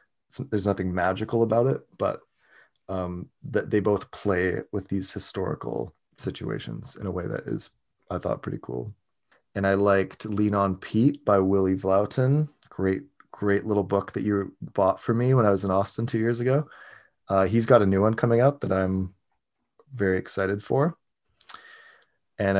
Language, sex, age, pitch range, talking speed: English, male, 20-39, 95-110 Hz, 170 wpm